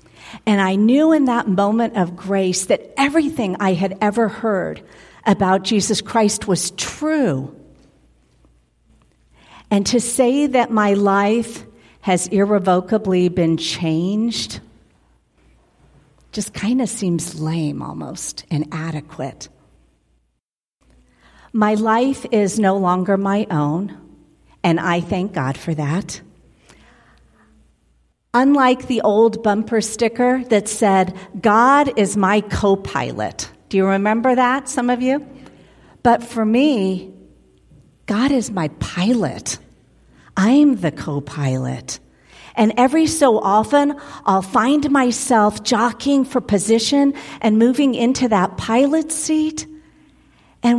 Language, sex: English, female